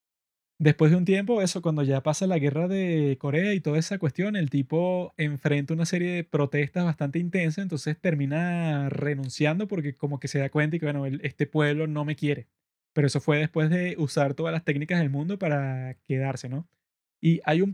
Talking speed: 200 wpm